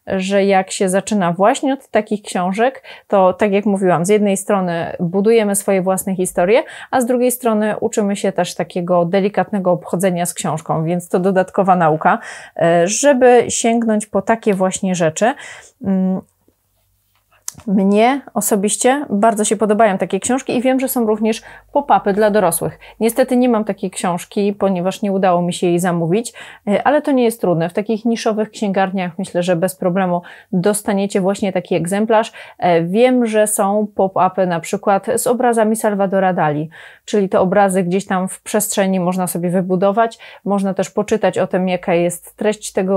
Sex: female